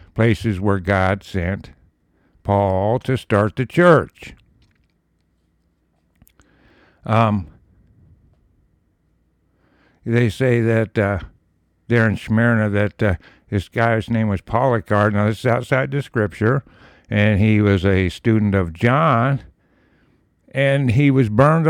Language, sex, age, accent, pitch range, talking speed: English, male, 60-79, American, 100-130 Hz, 115 wpm